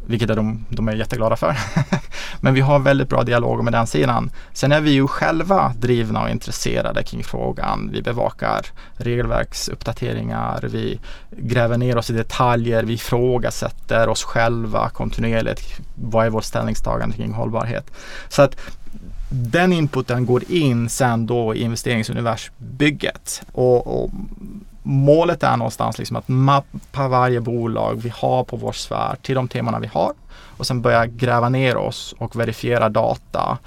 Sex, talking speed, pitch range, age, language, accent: male, 150 wpm, 115-130 Hz, 20-39, Swedish, Norwegian